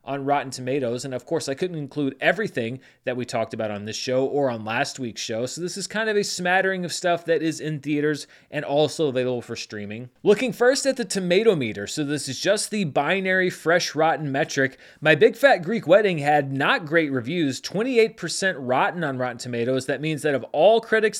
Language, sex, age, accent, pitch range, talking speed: English, male, 30-49, American, 140-185 Hz, 210 wpm